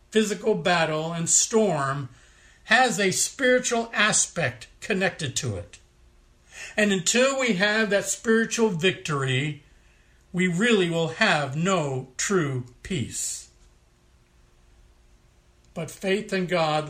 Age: 60-79